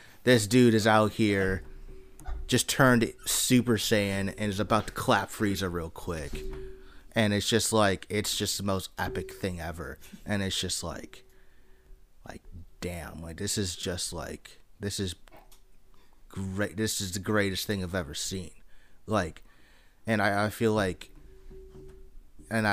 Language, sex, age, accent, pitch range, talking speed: English, male, 30-49, American, 80-100 Hz, 150 wpm